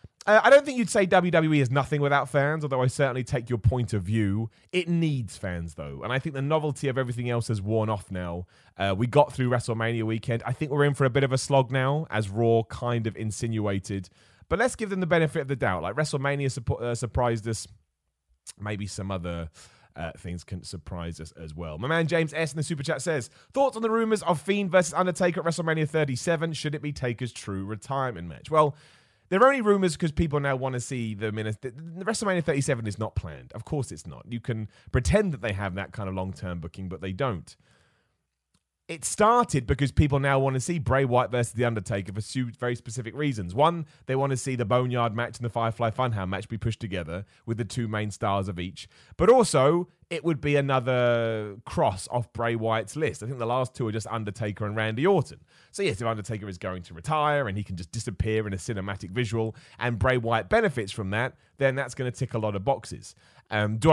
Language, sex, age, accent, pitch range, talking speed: English, male, 30-49, British, 105-145 Hz, 225 wpm